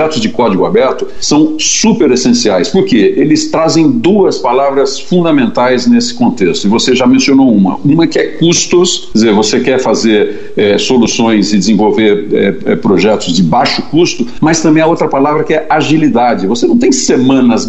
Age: 50-69